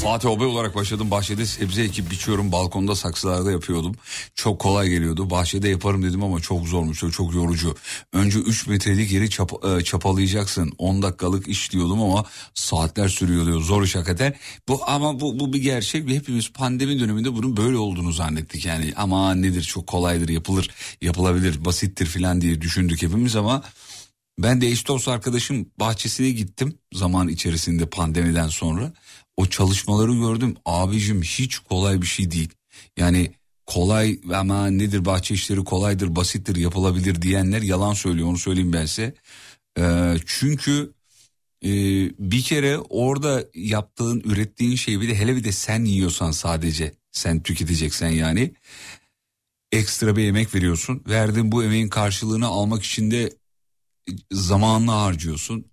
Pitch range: 90-115 Hz